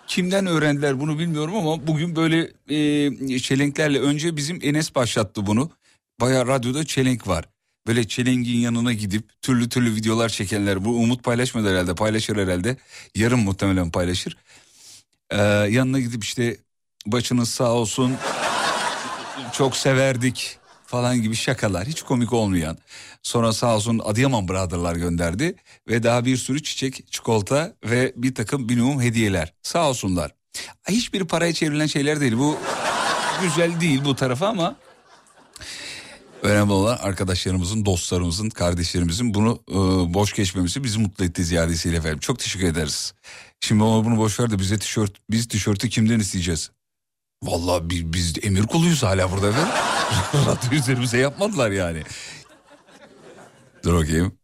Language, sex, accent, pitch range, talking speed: Turkish, male, native, 100-140 Hz, 130 wpm